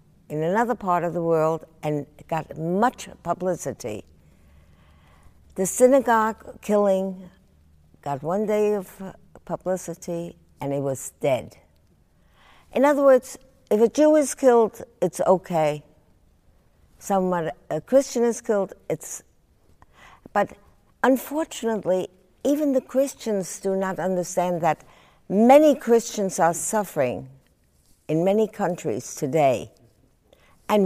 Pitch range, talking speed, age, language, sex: 150-210 Hz, 110 wpm, 60-79, English, female